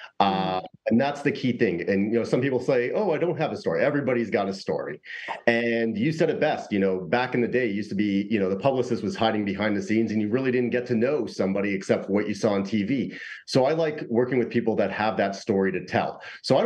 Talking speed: 265 wpm